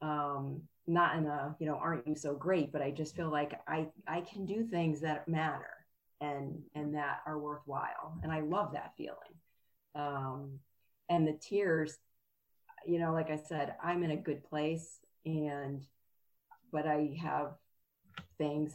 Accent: American